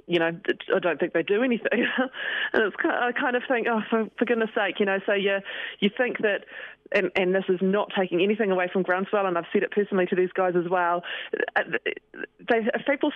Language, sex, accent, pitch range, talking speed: English, female, Australian, 180-210 Hz, 210 wpm